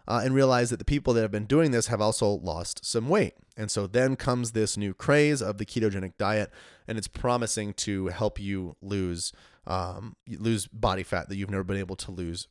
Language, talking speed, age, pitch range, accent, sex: English, 215 wpm, 30-49, 105-135 Hz, American, male